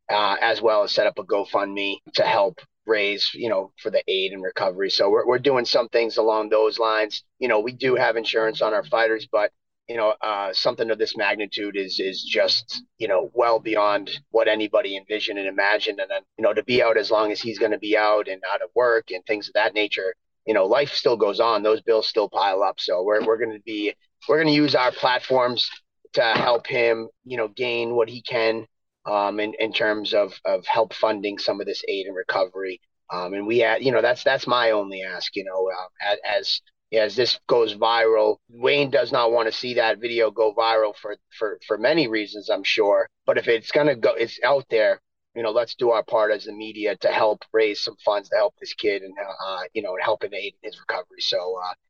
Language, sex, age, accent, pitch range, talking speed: English, male, 30-49, American, 105-130 Hz, 235 wpm